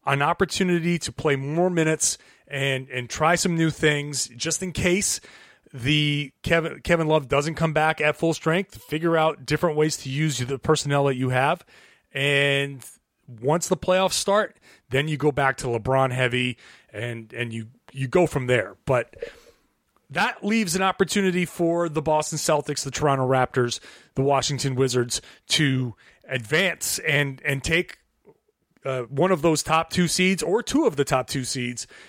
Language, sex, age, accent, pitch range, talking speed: English, male, 30-49, American, 130-175 Hz, 165 wpm